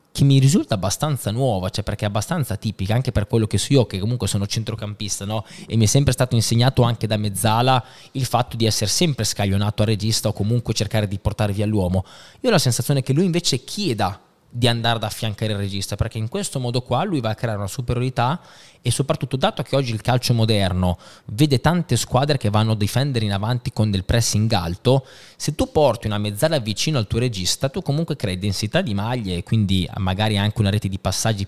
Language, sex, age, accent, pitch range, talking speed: Italian, male, 20-39, native, 105-130 Hz, 215 wpm